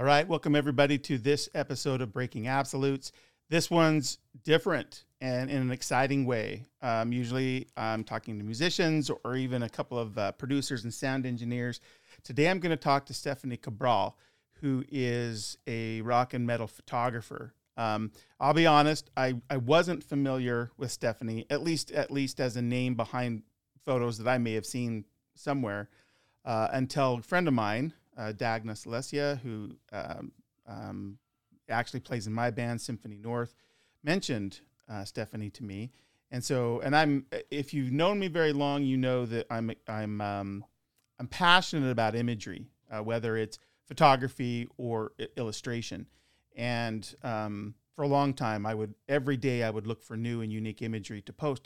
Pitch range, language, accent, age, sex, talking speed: 115-140 Hz, English, American, 40-59, male, 165 wpm